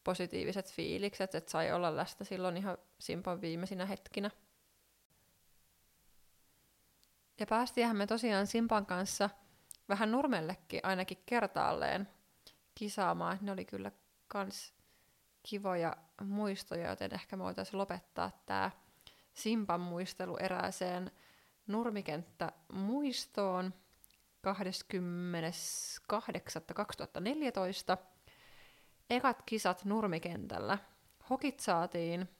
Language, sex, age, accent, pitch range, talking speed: Finnish, female, 20-39, native, 180-220 Hz, 80 wpm